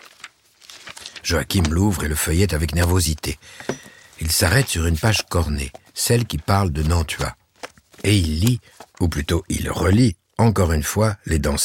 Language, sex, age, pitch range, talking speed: French, male, 60-79, 85-115 Hz, 155 wpm